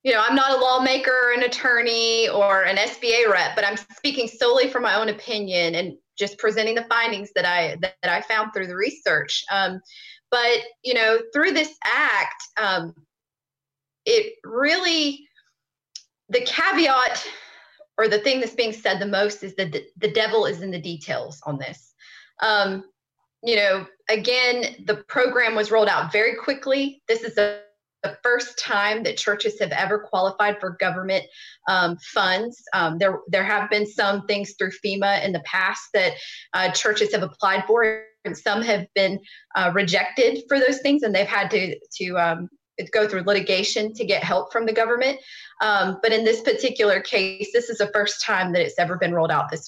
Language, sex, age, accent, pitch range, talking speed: English, female, 30-49, American, 190-240 Hz, 180 wpm